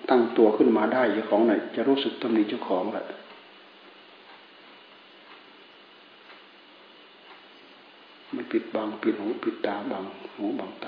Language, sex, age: Thai, male, 60-79